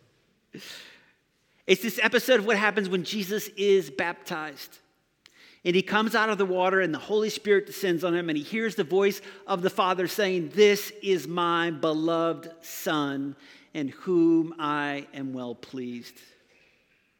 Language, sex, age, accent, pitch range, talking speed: English, male, 50-69, American, 175-215 Hz, 155 wpm